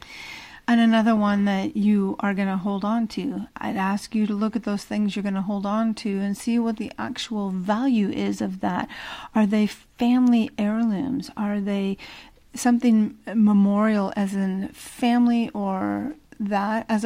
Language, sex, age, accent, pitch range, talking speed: English, female, 40-59, American, 190-230 Hz, 170 wpm